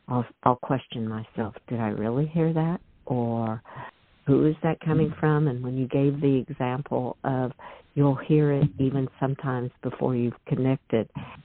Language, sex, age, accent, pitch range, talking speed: English, female, 60-79, American, 125-150 Hz, 155 wpm